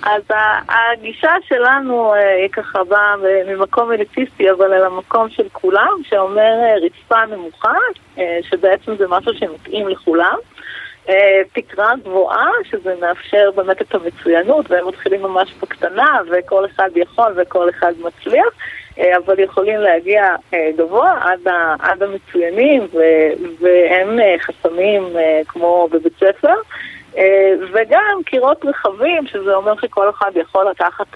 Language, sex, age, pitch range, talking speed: Hebrew, female, 30-49, 180-220 Hz, 115 wpm